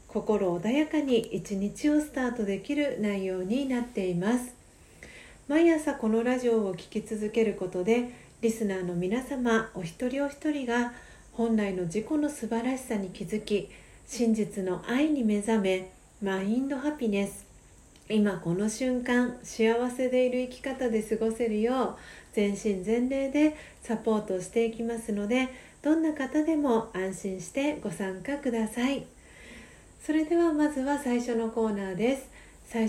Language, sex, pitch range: Japanese, female, 205-260 Hz